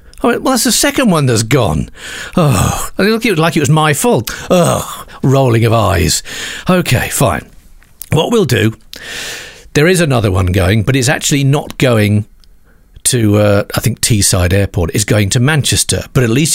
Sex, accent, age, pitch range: male, British, 50-69, 100-135 Hz